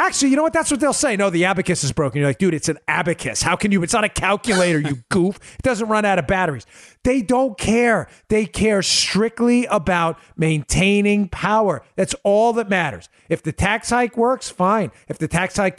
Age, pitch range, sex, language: 40-59, 120-180 Hz, male, English